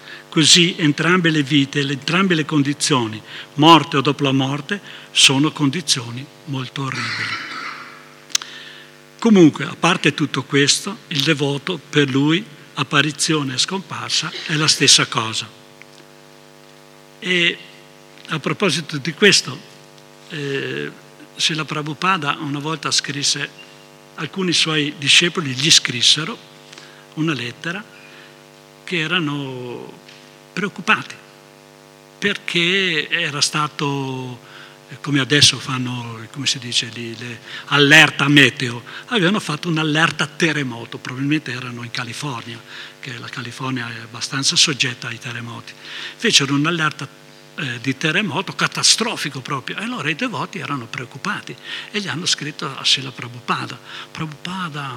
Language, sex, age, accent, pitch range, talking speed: Italian, male, 60-79, native, 125-160 Hz, 115 wpm